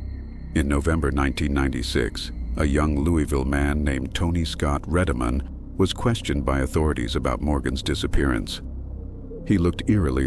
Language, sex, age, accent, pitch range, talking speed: English, male, 60-79, American, 70-90 Hz, 125 wpm